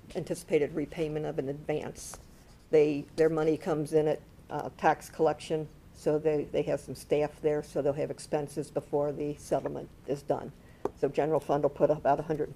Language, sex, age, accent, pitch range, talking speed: English, female, 50-69, American, 150-175 Hz, 170 wpm